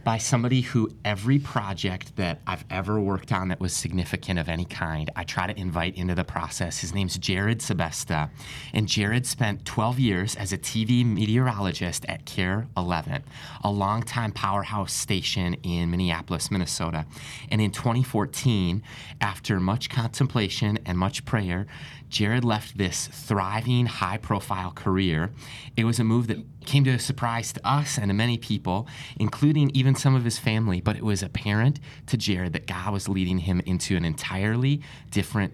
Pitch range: 95-125 Hz